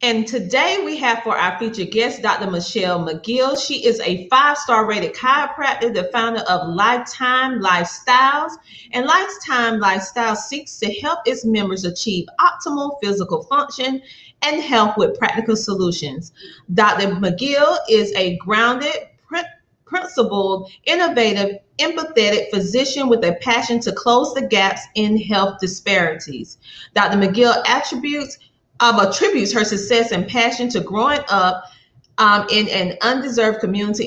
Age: 30-49